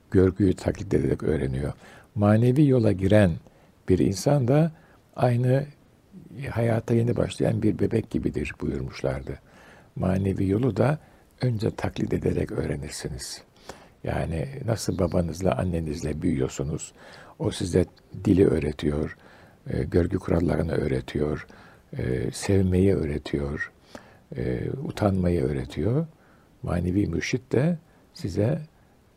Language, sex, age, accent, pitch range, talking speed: Turkish, male, 60-79, native, 90-140 Hz, 95 wpm